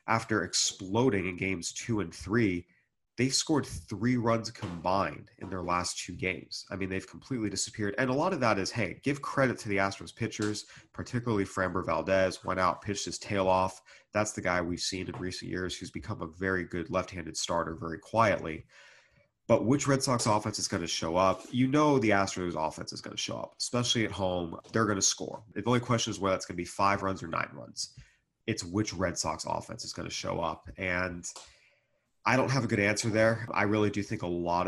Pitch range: 90-110 Hz